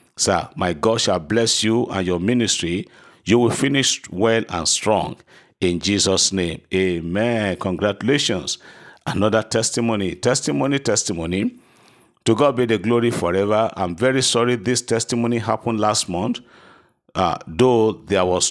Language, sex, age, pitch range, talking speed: English, male, 50-69, 95-120 Hz, 135 wpm